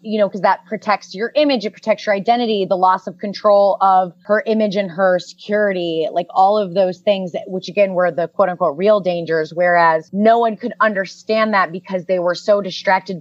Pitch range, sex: 175-205 Hz, female